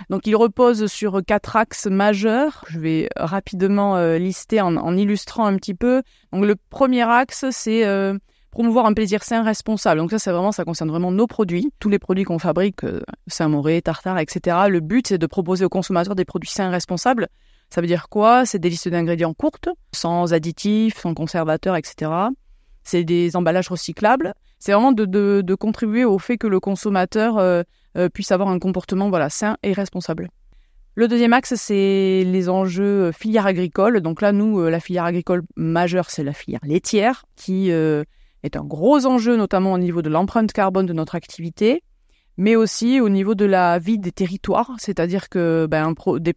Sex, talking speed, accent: female, 185 wpm, French